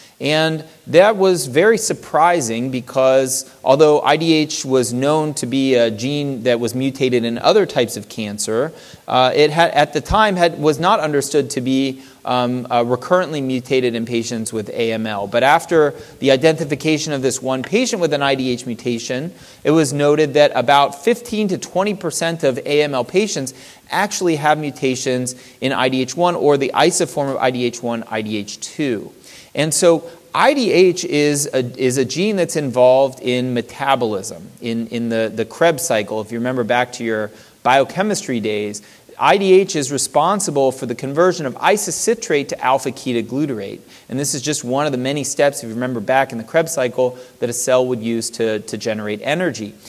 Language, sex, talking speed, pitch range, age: English, male, 165 wpm, 125-155 Hz, 30-49